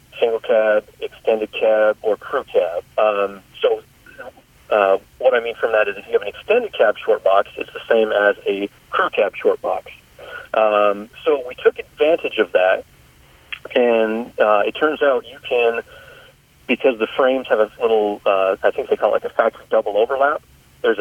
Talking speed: 185 wpm